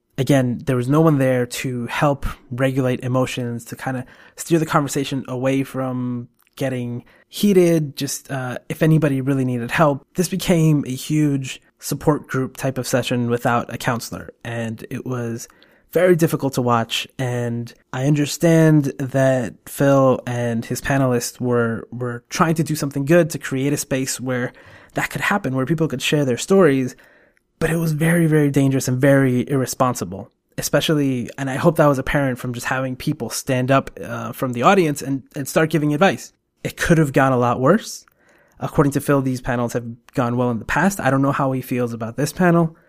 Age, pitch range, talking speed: 20-39, 125-145 Hz, 185 wpm